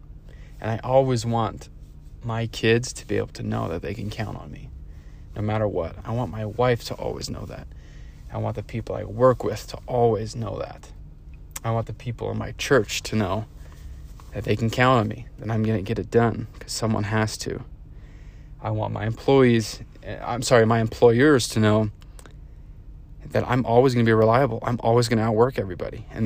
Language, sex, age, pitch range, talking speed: English, male, 30-49, 95-120 Hz, 205 wpm